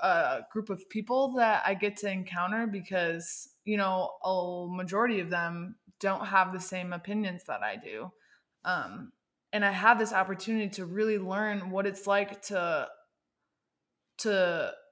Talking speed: 155 wpm